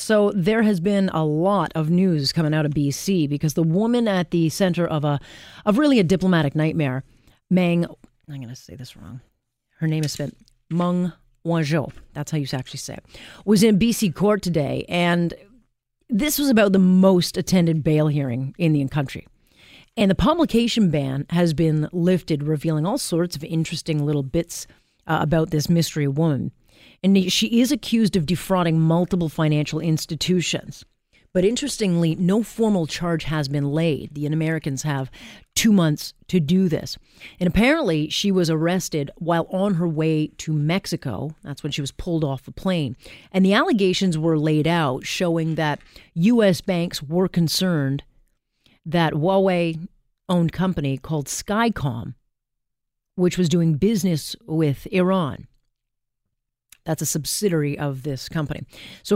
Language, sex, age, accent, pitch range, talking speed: English, female, 40-59, American, 145-185 Hz, 155 wpm